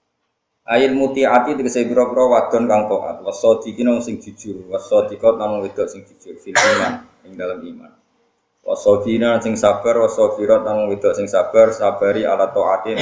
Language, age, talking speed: Indonesian, 20-39, 150 wpm